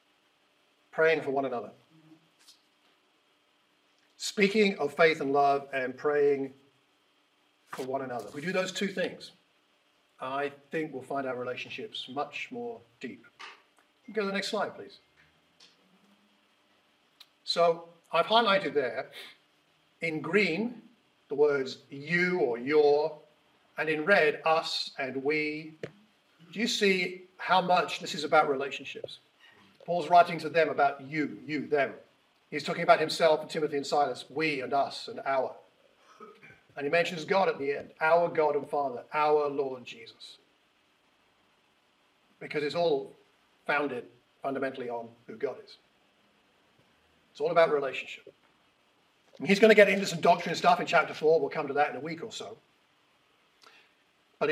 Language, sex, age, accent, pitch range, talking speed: English, male, 50-69, British, 140-185 Hz, 145 wpm